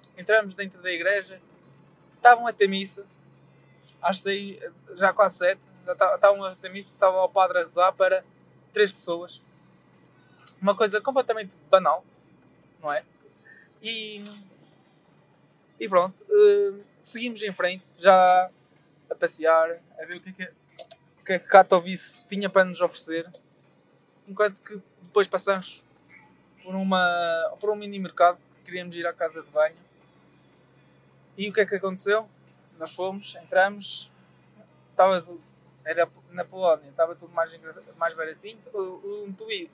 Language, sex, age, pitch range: Portuguese, male, 20-39, 175-205 Hz